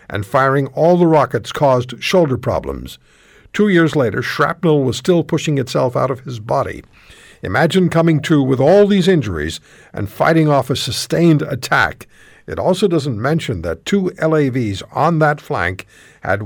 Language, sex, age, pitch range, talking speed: English, male, 60-79, 115-165 Hz, 160 wpm